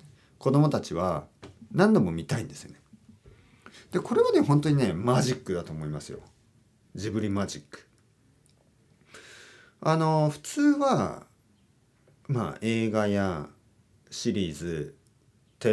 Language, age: Japanese, 40-59